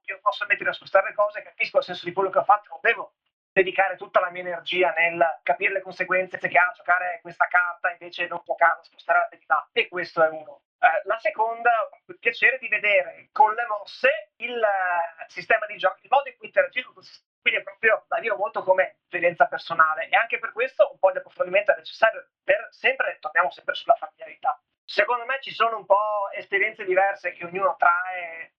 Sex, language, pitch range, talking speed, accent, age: male, Italian, 180-265 Hz, 205 wpm, native, 30-49